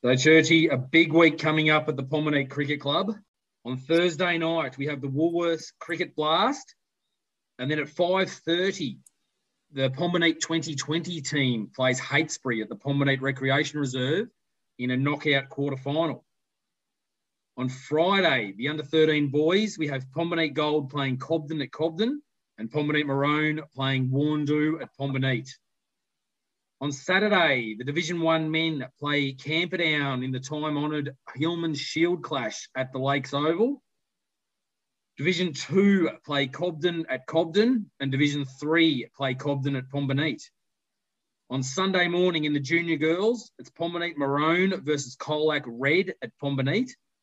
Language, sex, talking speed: English, male, 135 wpm